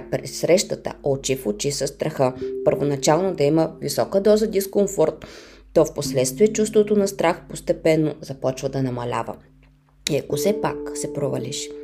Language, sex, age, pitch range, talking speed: Bulgarian, female, 20-39, 135-190 Hz, 140 wpm